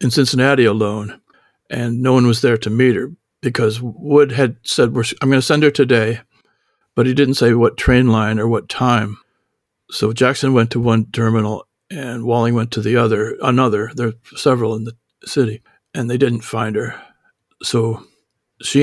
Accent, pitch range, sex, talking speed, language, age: American, 110-130 Hz, male, 180 wpm, English, 60-79